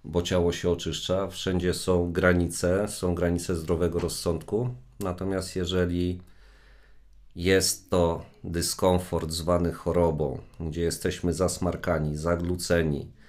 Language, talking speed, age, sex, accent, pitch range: Polish, 100 wpm, 40-59, male, native, 85-95 Hz